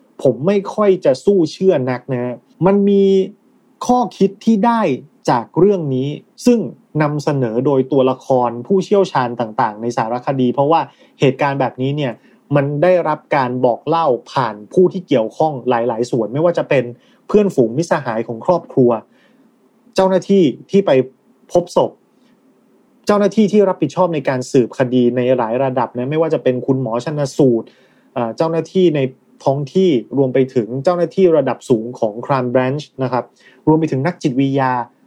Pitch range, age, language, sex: 125-185 Hz, 30-49, Thai, male